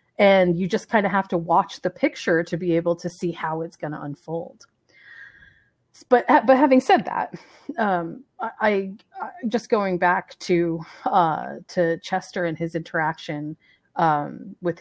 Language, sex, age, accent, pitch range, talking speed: English, female, 30-49, American, 180-245 Hz, 160 wpm